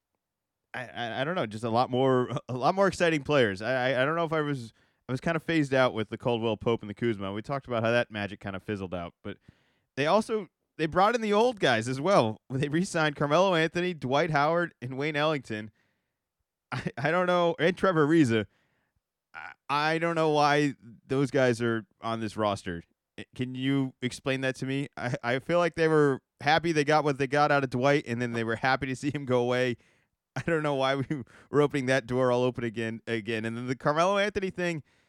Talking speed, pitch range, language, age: 225 wpm, 120-155 Hz, English, 20-39